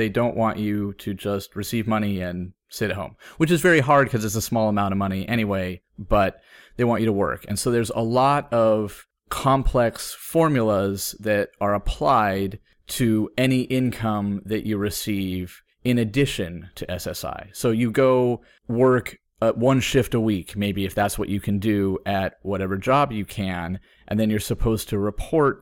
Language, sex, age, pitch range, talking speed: English, male, 30-49, 105-130 Hz, 180 wpm